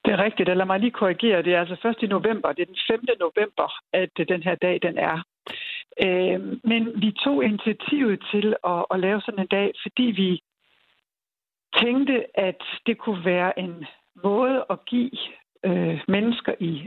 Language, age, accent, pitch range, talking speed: Danish, 60-79, native, 180-230 Hz, 170 wpm